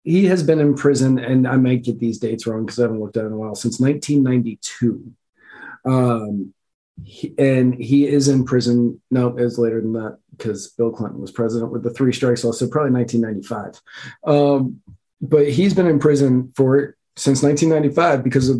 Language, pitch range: English, 115-140 Hz